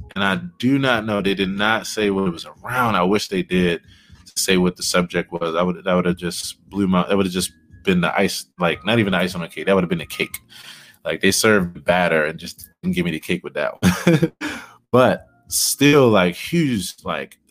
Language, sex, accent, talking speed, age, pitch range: English, male, American, 245 wpm, 20-39, 90-115 Hz